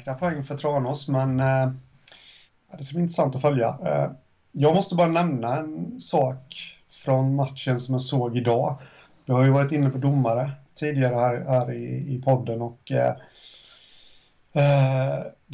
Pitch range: 125-140 Hz